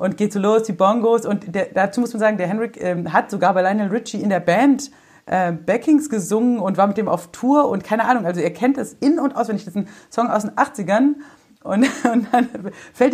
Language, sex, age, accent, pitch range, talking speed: German, female, 40-59, German, 195-265 Hz, 250 wpm